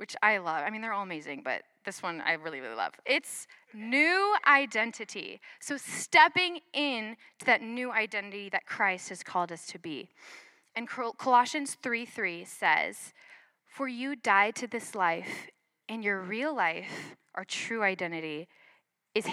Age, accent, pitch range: 10-29, American, 205-305 Hz